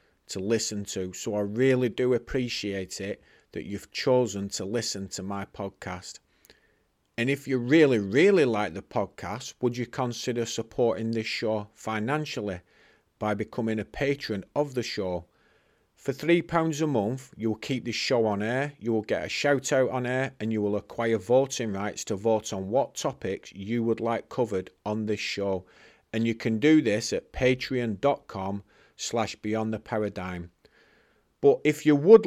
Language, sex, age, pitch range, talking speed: English, male, 40-59, 105-130 Hz, 170 wpm